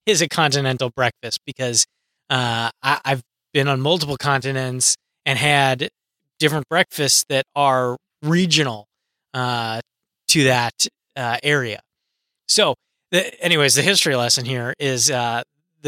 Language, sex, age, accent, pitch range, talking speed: English, male, 20-39, American, 130-155 Hz, 125 wpm